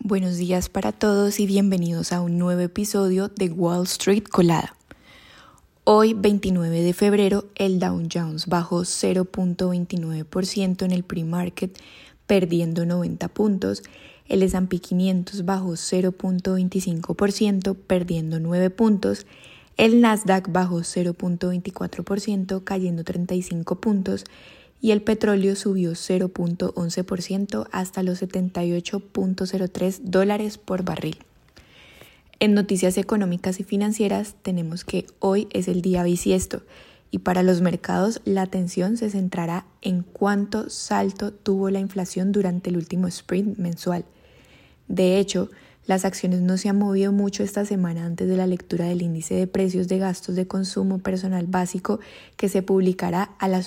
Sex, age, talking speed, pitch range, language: female, 10-29, 130 wpm, 175-195 Hz, Spanish